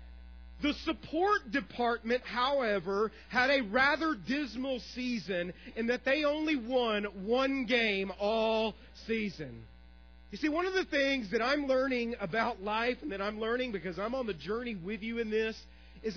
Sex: male